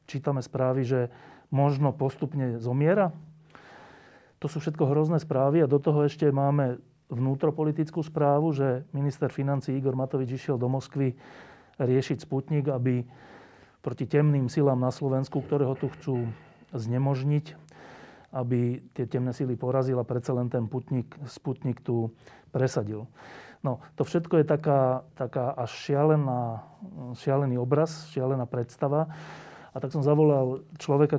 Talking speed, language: 130 wpm, Slovak